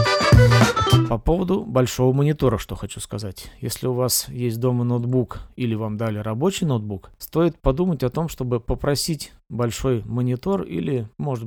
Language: Russian